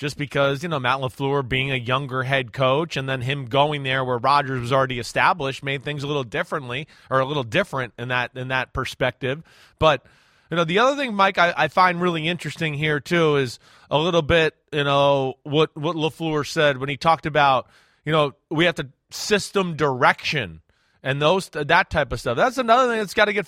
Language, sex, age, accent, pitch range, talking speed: English, male, 30-49, American, 145-215 Hz, 210 wpm